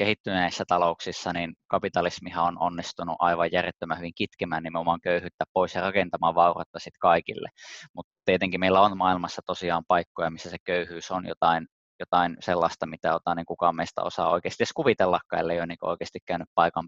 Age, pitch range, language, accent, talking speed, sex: 20-39, 85-95 Hz, Finnish, native, 165 wpm, male